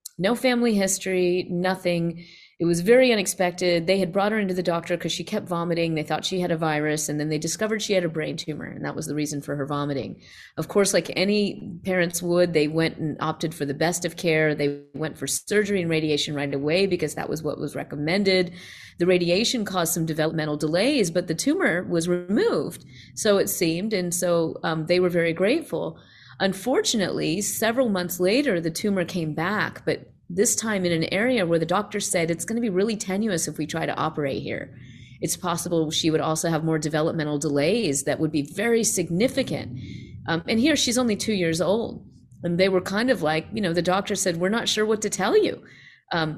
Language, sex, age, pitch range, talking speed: English, female, 30-49, 160-200 Hz, 210 wpm